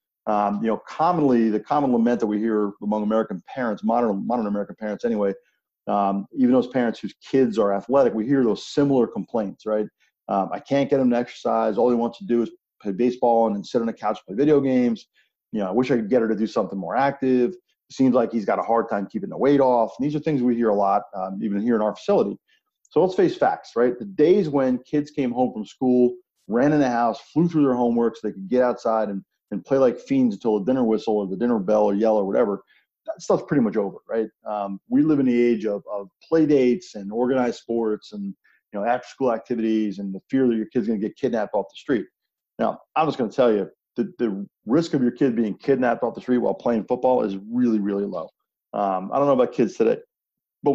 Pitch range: 110-135 Hz